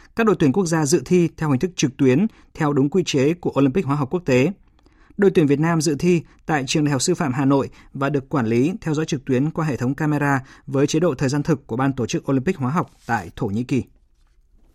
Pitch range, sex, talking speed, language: 130-165 Hz, male, 265 wpm, Vietnamese